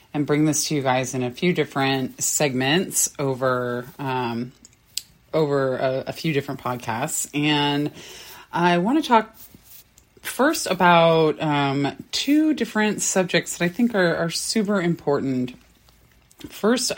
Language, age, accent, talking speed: English, 30-49, American, 135 wpm